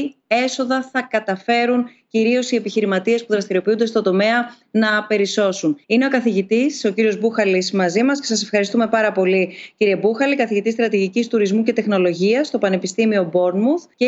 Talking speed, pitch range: 155 wpm, 210-255 Hz